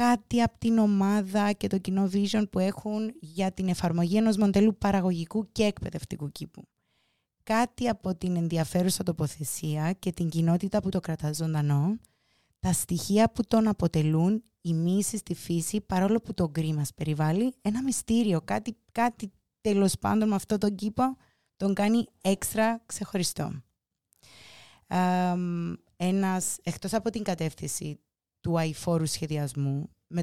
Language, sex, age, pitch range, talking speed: Greek, female, 20-39, 170-215 Hz, 135 wpm